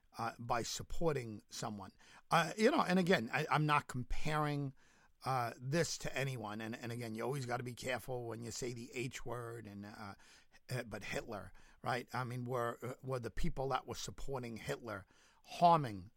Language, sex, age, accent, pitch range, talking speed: English, male, 50-69, American, 110-130 Hz, 180 wpm